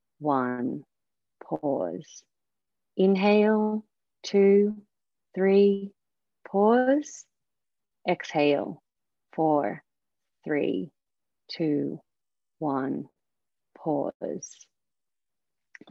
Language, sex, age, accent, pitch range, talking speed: English, female, 30-49, Australian, 145-180 Hz, 45 wpm